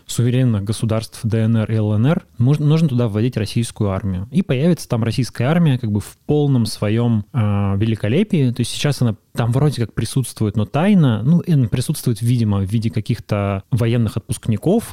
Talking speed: 170 wpm